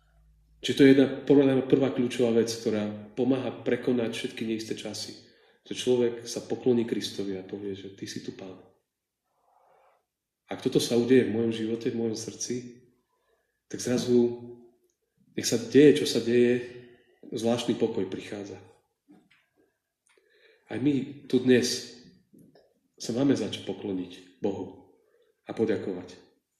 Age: 40-59